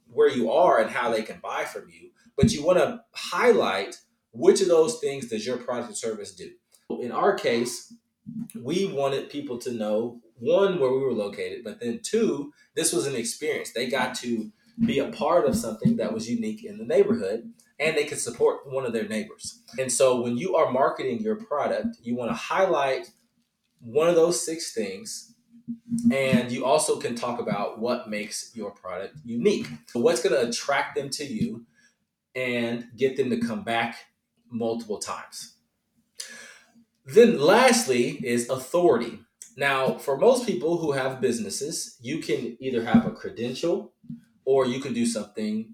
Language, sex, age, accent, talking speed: English, male, 30-49, American, 175 wpm